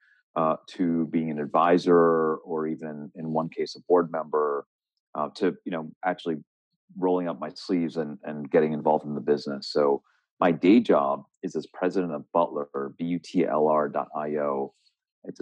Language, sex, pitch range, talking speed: English, male, 70-80 Hz, 160 wpm